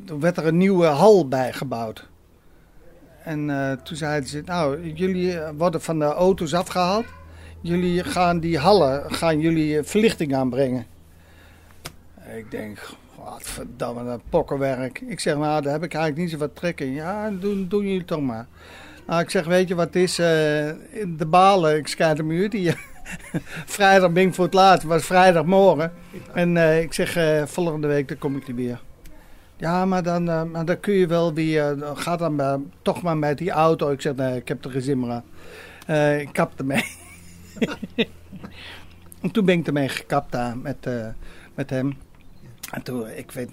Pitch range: 130-175 Hz